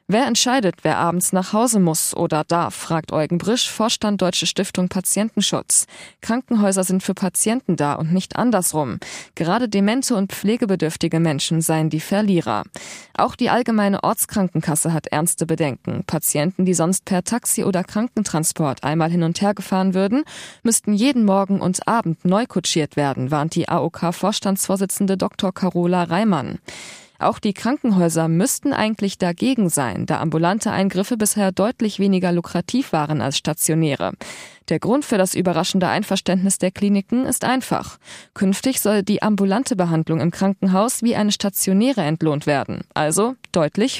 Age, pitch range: 20-39, 165-210 Hz